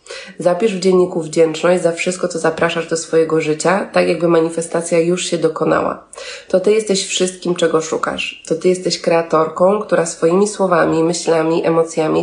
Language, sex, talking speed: Polish, female, 155 wpm